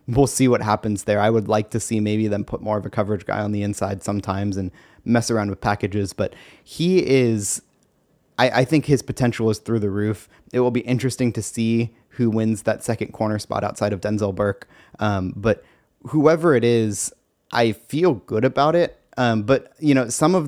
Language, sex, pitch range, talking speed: English, male, 105-120 Hz, 210 wpm